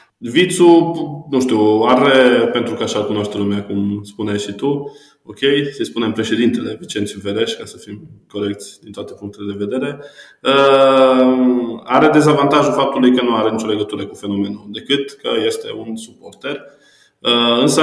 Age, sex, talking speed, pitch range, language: 20-39, male, 160 wpm, 105-135 Hz, Romanian